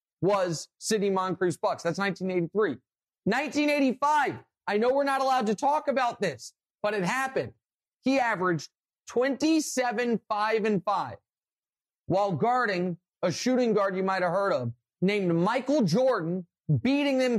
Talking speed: 140 wpm